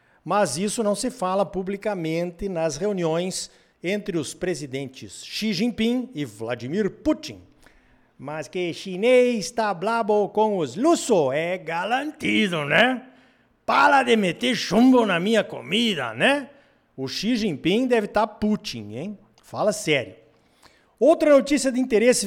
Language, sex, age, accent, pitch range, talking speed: Portuguese, male, 50-69, Brazilian, 160-225 Hz, 130 wpm